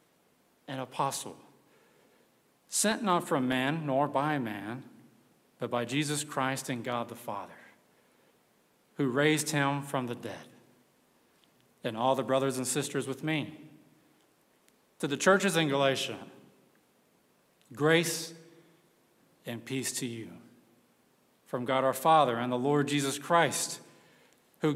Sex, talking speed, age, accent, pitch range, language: male, 125 wpm, 50-69, American, 125-155 Hz, English